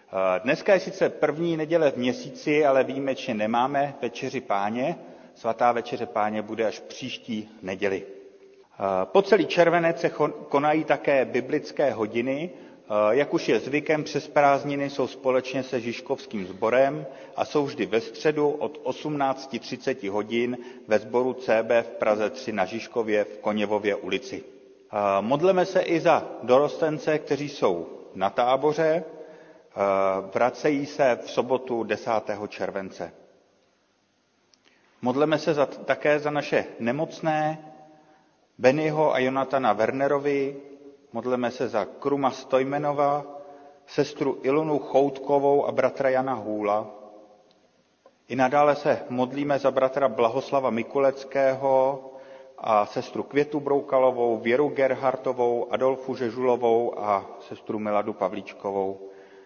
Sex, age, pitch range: male, 40-59, 115-145 Hz